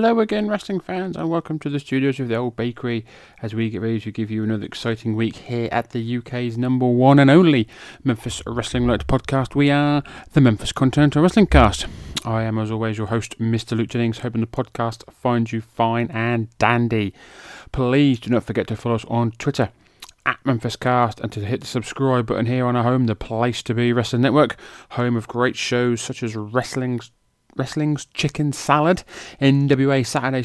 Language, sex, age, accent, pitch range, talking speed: English, male, 30-49, British, 115-130 Hz, 195 wpm